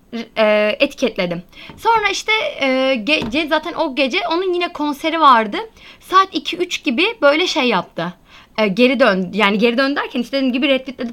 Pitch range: 250-350 Hz